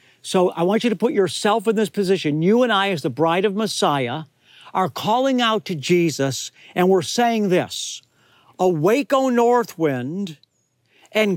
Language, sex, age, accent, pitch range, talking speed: English, male, 50-69, American, 160-225 Hz, 170 wpm